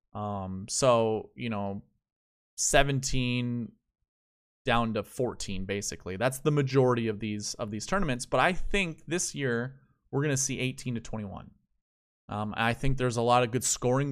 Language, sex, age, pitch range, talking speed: English, male, 20-39, 110-135 Hz, 160 wpm